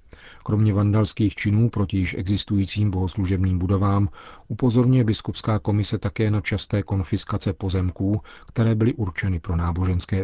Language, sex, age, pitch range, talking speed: Czech, male, 40-59, 90-105 Hz, 125 wpm